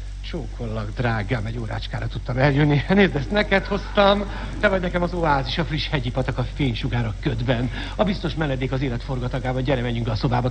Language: Hungarian